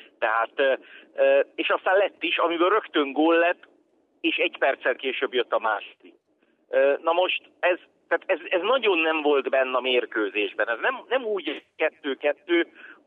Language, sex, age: Hungarian, male, 50-69